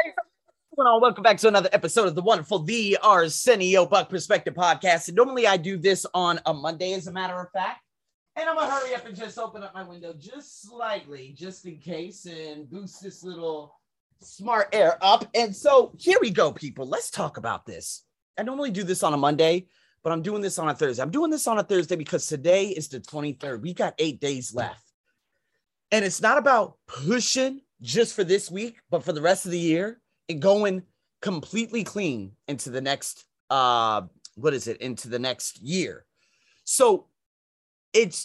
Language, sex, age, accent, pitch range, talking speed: English, male, 30-49, American, 155-225 Hz, 195 wpm